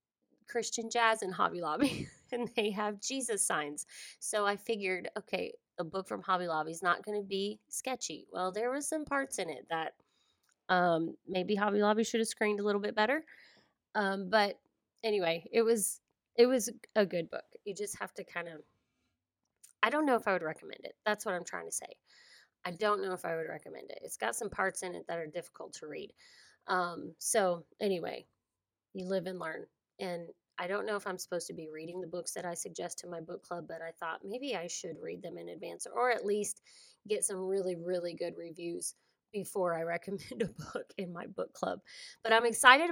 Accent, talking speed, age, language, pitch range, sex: American, 210 wpm, 20-39, English, 175-230 Hz, female